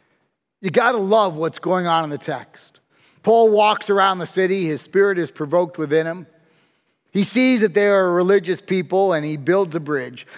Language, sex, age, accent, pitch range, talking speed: English, male, 40-59, American, 165-215 Hz, 185 wpm